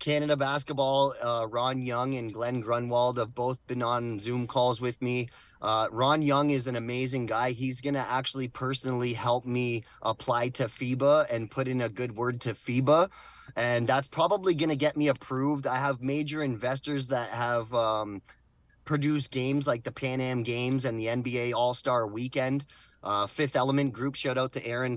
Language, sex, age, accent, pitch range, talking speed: English, male, 20-39, American, 120-135 Hz, 180 wpm